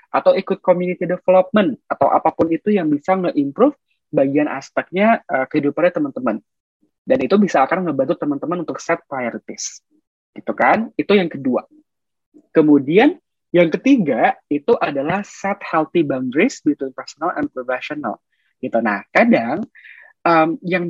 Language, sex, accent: Indonesian, male, native